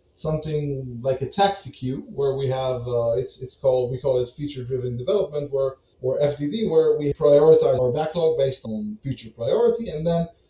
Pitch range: 125-155 Hz